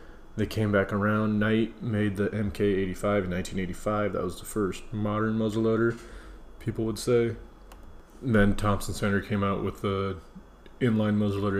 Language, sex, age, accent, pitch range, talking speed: English, male, 20-39, American, 95-110 Hz, 145 wpm